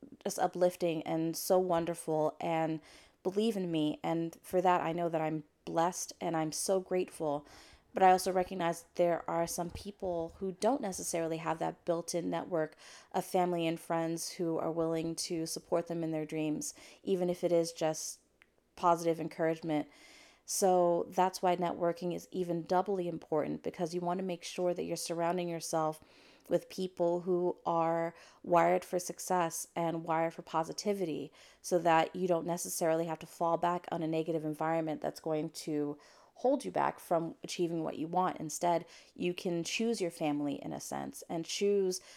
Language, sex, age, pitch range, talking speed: English, female, 30-49, 160-180 Hz, 170 wpm